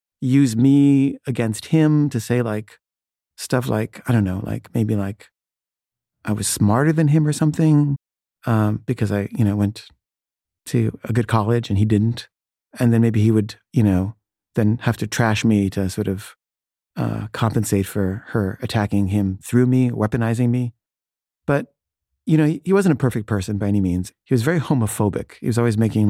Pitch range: 105-130 Hz